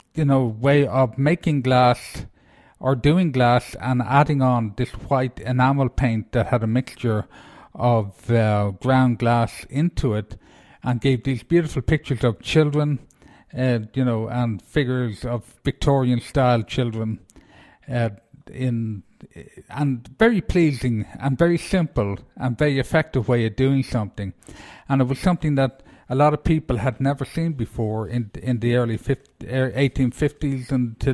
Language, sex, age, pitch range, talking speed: English, male, 50-69, 115-145 Hz, 150 wpm